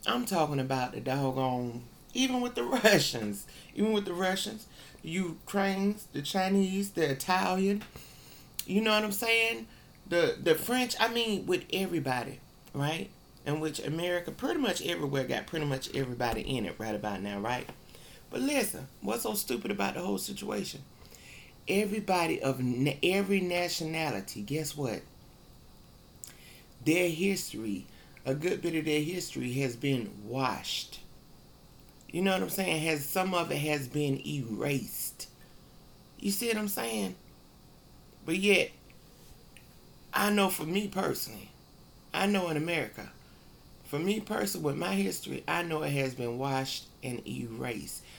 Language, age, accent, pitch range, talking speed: English, 30-49, American, 125-185 Hz, 145 wpm